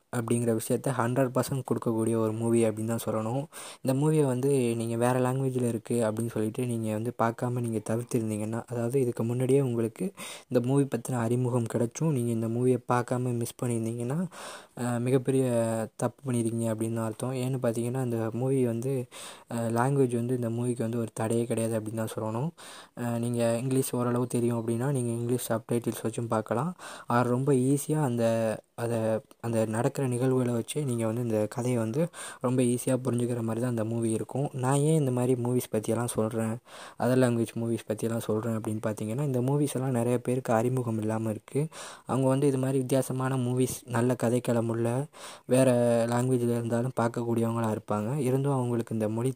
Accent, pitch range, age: native, 115-130 Hz, 20-39